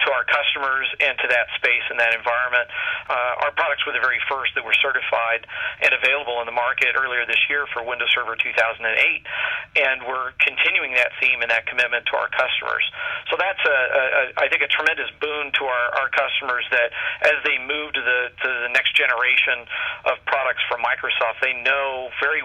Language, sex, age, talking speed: English, male, 40-59, 195 wpm